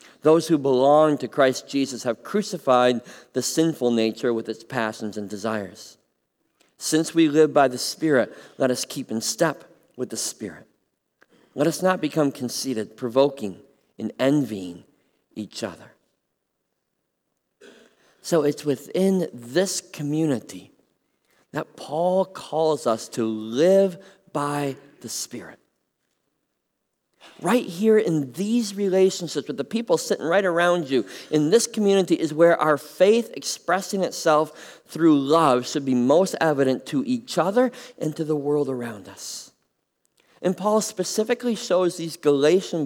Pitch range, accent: 130-195 Hz, American